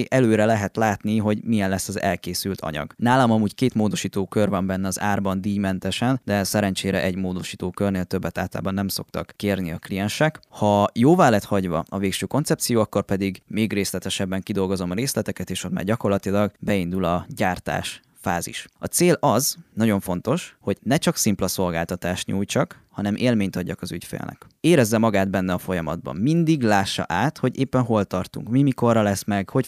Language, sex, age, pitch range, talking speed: Hungarian, male, 20-39, 95-120 Hz, 175 wpm